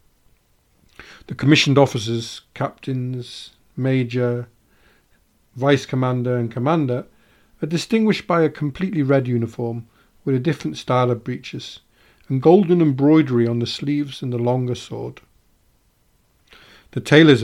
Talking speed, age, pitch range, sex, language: 115 wpm, 50-69, 125-155 Hz, male, English